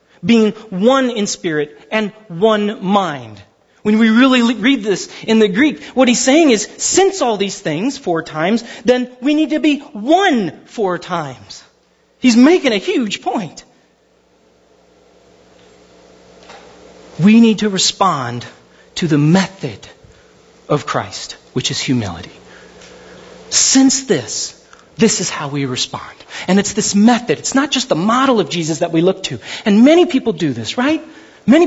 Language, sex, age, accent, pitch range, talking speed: English, male, 40-59, American, 185-280 Hz, 150 wpm